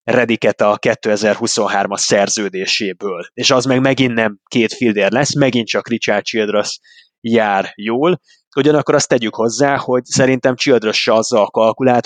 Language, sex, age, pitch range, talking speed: Hungarian, male, 20-39, 110-125 Hz, 140 wpm